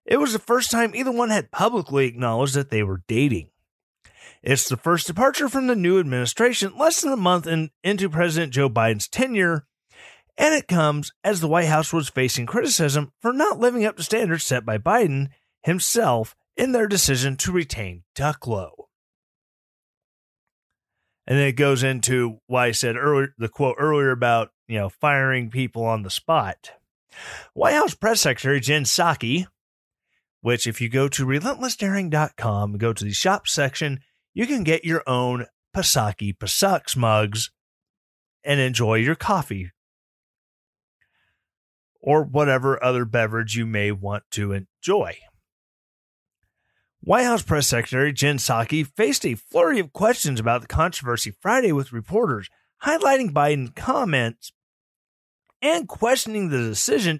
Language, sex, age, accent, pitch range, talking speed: English, male, 30-49, American, 115-180 Hz, 145 wpm